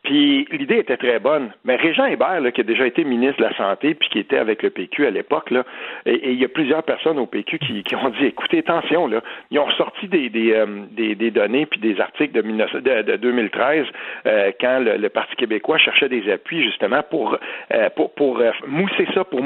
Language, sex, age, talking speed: French, male, 50-69, 235 wpm